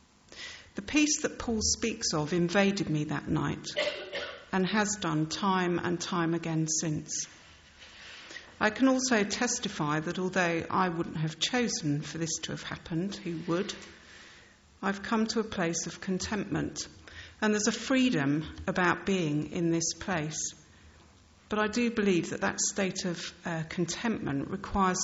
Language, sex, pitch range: English, female, 160-200 Hz